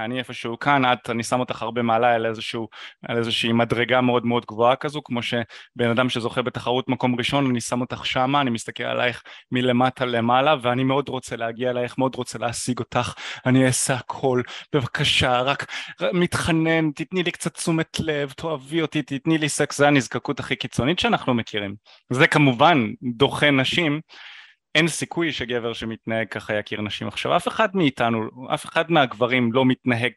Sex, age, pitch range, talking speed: male, 20-39, 120-165 Hz, 165 wpm